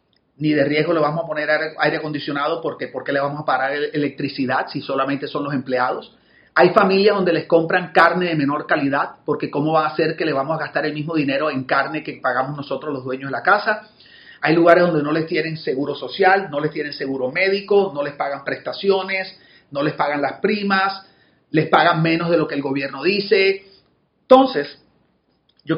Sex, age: male, 40-59